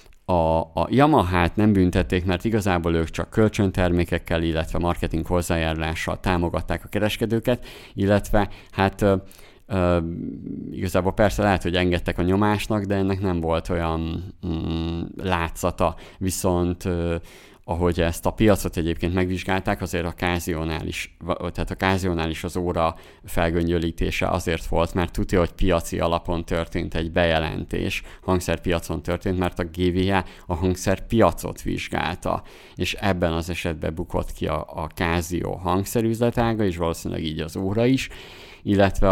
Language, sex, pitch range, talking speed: Hungarian, male, 85-95 Hz, 130 wpm